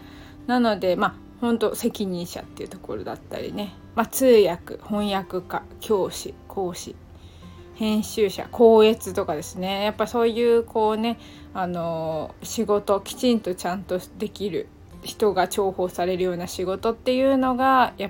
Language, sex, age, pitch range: Japanese, female, 20-39, 180-235 Hz